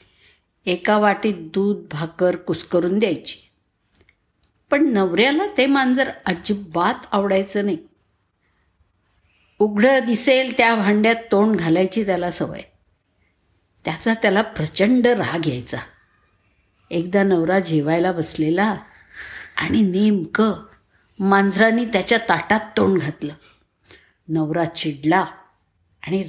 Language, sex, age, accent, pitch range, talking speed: Marathi, female, 50-69, native, 155-210 Hz, 90 wpm